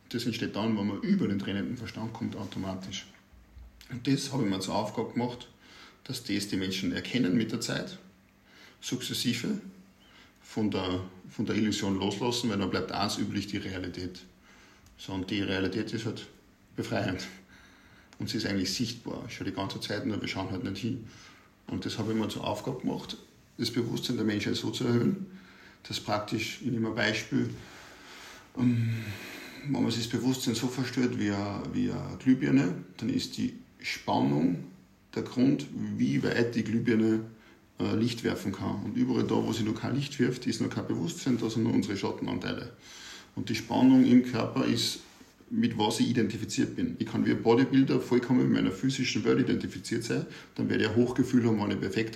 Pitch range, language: 100-125 Hz, German